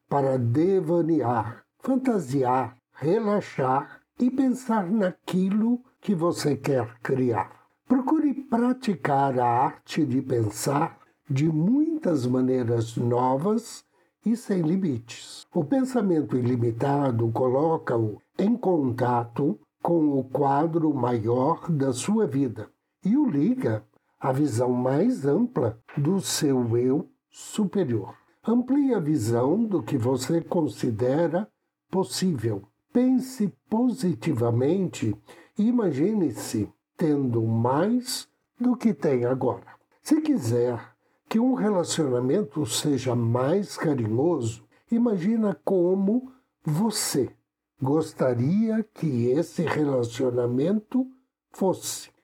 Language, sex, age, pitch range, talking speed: Portuguese, male, 60-79, 130-215 Hz, 95 wpm